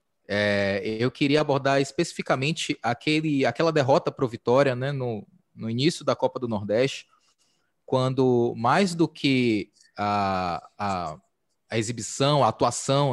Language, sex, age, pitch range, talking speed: Portuguese, male, 20-39, 125-170 Hz, 130 wpm